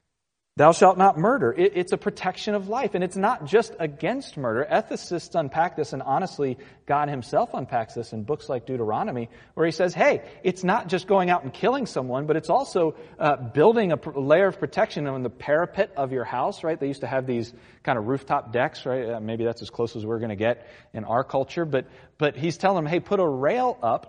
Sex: male